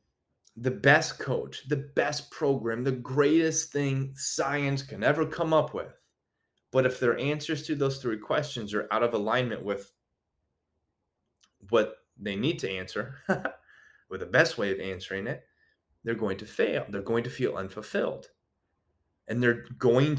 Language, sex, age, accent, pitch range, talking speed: English, male, 30-49, American, 105-140 Hz, 155 wpm